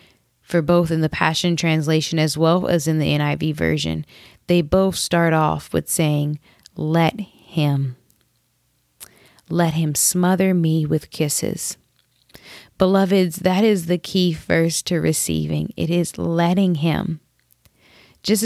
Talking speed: 130 wpm